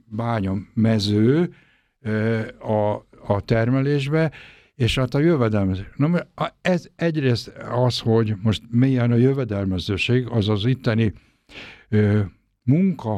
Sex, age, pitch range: male, 60-79, 105-125 Hz